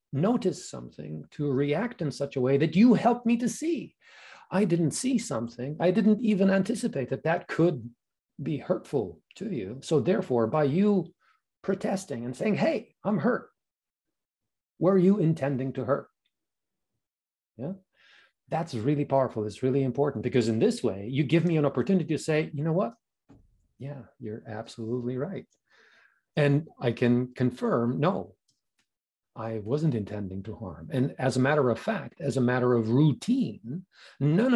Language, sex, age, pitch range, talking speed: English, male, 40-59, 120-165 Hz, 160 wpm